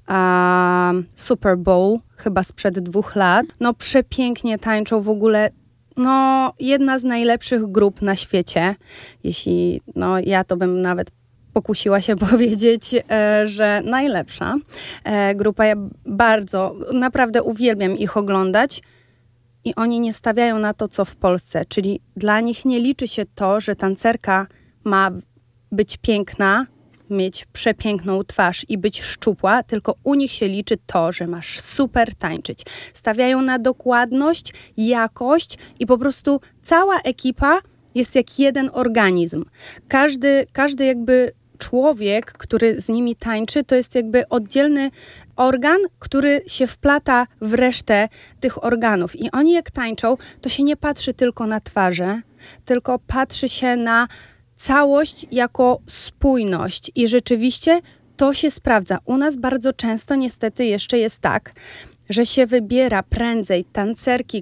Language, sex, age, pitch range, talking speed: Polish, female, 30-49, 200-255 Hz, 130 wpm